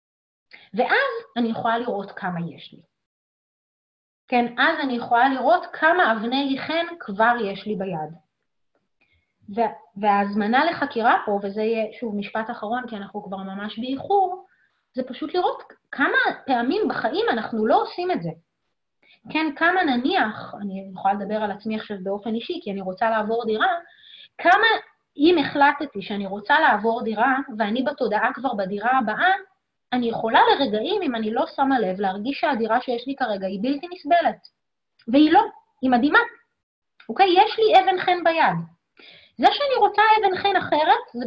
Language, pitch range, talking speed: Hebrew, 215-340 Hz, 155 wpm